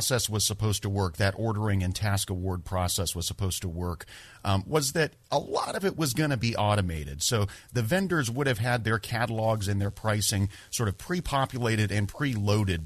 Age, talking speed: 40-59, 195 wpm